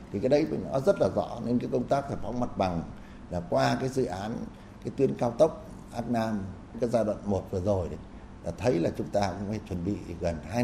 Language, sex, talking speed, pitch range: Vietnamese, male, 250 wpm, 100-130 Hz